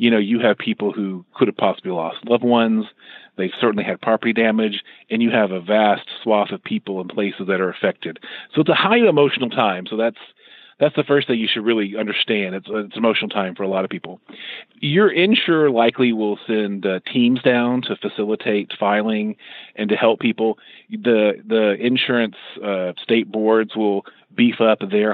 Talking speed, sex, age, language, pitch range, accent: 190 wpm, male, 40-59, English, 110-155 Hz, American